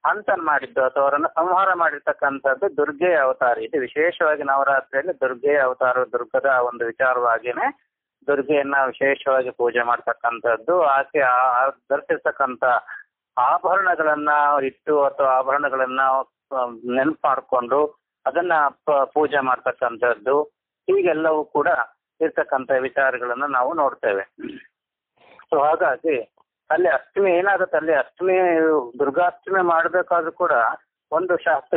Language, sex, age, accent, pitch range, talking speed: Kannada, male, 30-49, native, 135-175 Hz, 85 wpm